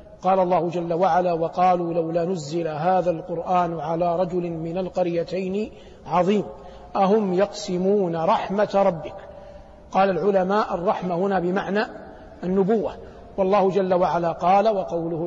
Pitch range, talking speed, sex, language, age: 185-220 Hz, 115 wpm, male, Arabic, 50-69